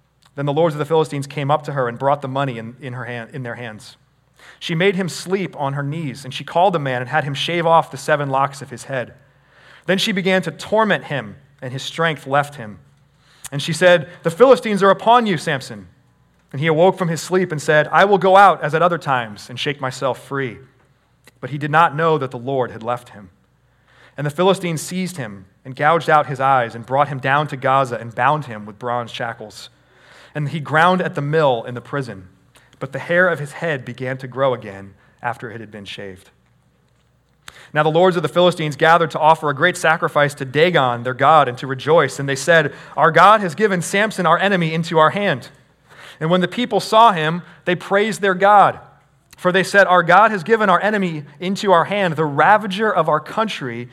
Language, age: English, 30-49